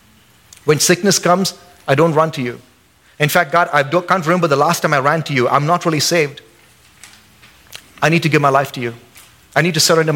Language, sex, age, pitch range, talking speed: English, male, 30-49, 130-165 Hz, 225 wpm